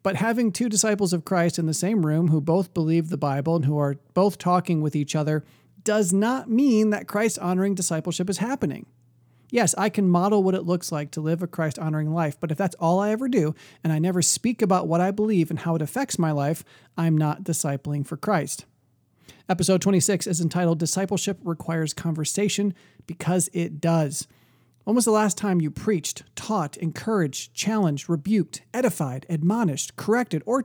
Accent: American